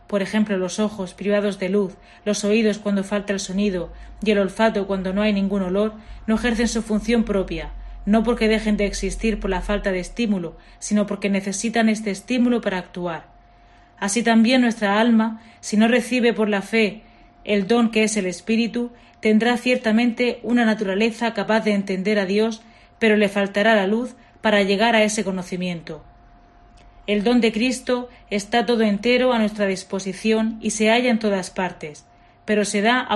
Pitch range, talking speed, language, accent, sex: 195-225 Hz, 175 wpm, Spanish, Spanish, female